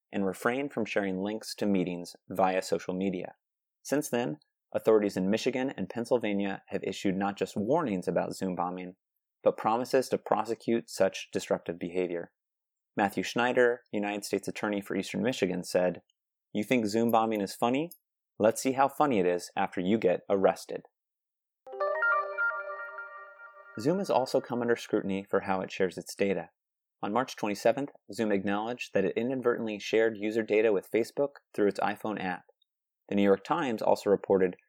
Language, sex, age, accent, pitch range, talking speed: English, male, 30-49, American, 95-130 Hz, 160 wpm